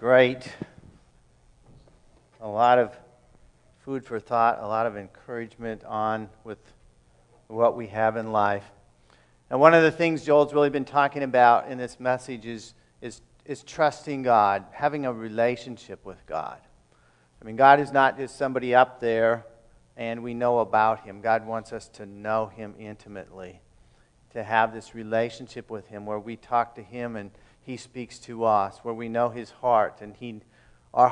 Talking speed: 165 wpm